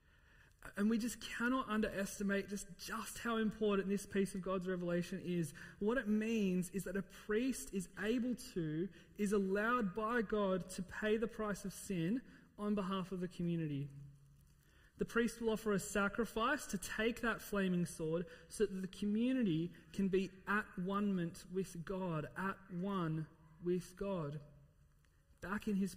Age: 30-49